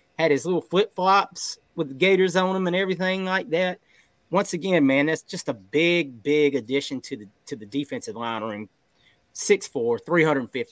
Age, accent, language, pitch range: 30-49, American, English, 120-180 Hz